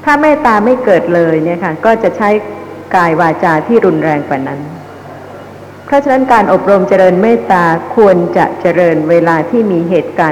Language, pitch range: Thai, 165-220 Hz